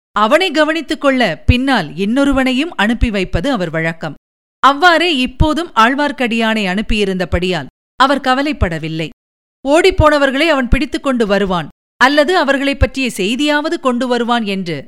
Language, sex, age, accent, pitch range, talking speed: Tamil, female, 50-69, native, 205-275 Hz, 105 wpm